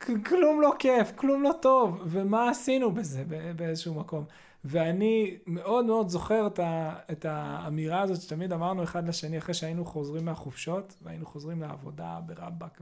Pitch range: 170-230 Hz